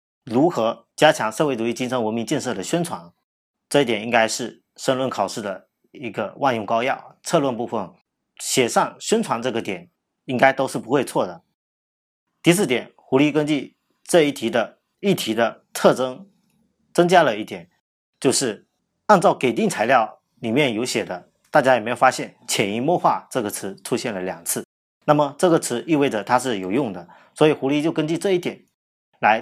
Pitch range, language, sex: 110-150 Hz, Chinese, male